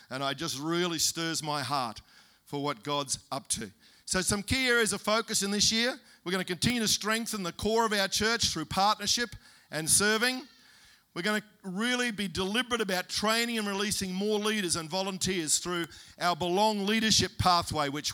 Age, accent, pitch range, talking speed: 50-69, Australian, 165-215 Hz, 185 wpm